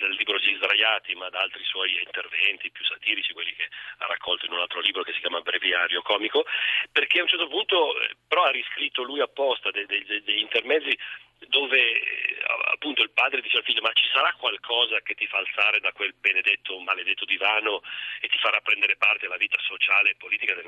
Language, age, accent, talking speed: Italian, 40-59, native, 195 wpm